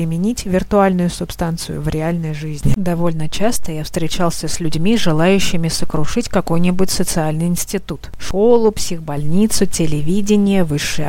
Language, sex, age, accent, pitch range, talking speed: Russian, female, 30-49, native, 155-200 Hz, 115 wpm